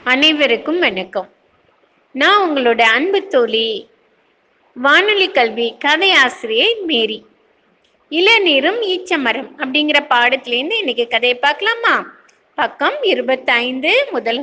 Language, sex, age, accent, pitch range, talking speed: Tamil, female, 30-49, native, 255-405 Hz, 90 wpm